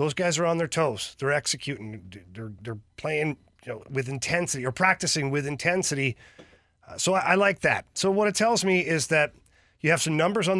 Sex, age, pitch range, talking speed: male, 40-59, 125-165 Hz, 210 wpm